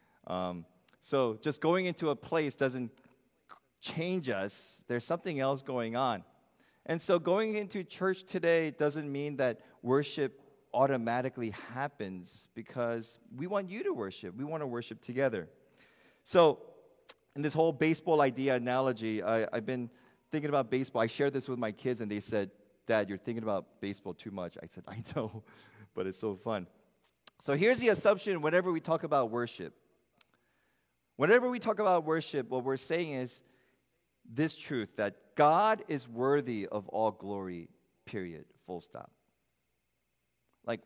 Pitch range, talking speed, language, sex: 110-160 Hz, 155 wpm, English, male